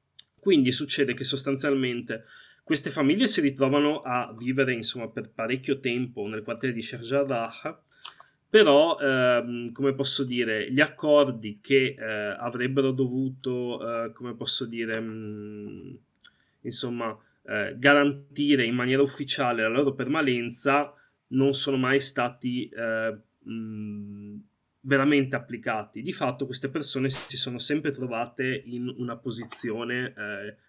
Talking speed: 125 wpm